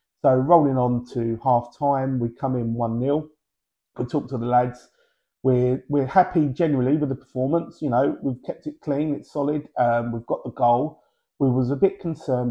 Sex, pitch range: male, 115-135 Hz